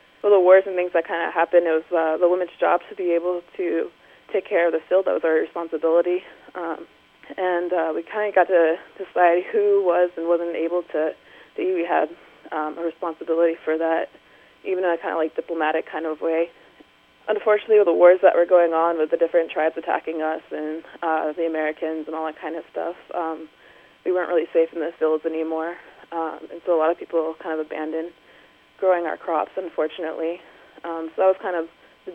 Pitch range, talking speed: 160-175 Hz, 215 wpm